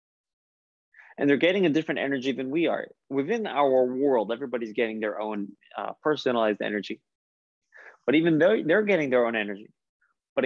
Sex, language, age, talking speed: male, English, 20-39, 160 wpm